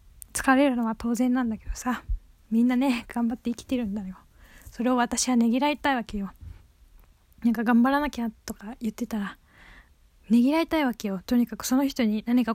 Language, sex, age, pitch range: Japanese, female, 10-29, 235-295 Hz